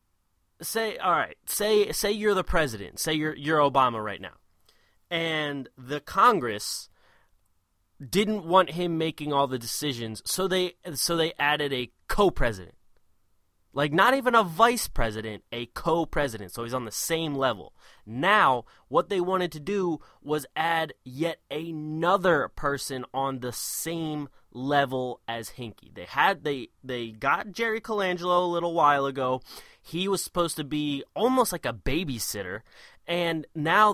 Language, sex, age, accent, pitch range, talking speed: English, male, 20-39, American, 115-165 Hz, 150 wpm